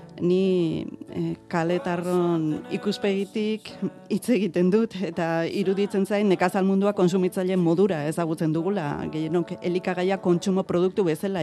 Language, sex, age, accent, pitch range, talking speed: Spanish, female, 40-59, Spanish, 160-185 Hz, 105 wpm